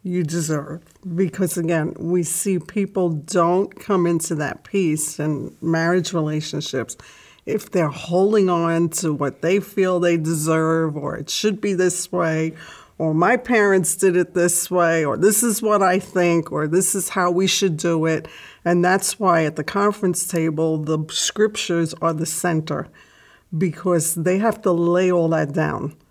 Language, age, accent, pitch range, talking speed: English, 50-69, American, 160-185 Hz, 165 wpm